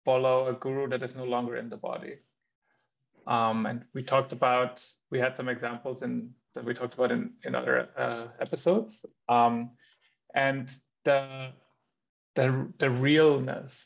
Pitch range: 125-140 Hz